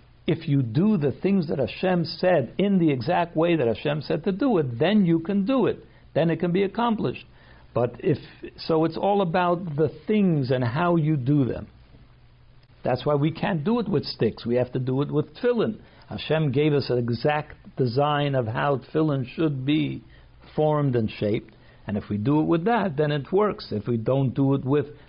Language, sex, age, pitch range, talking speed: English, male, 60-79, 130-165 Hz, 205 wpm